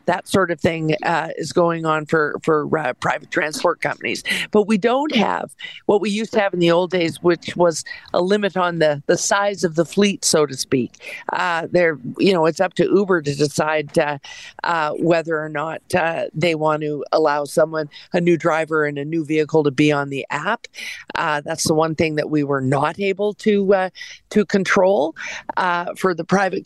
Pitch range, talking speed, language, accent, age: 160-200 Hz, 205 wpm, English, American, 50-69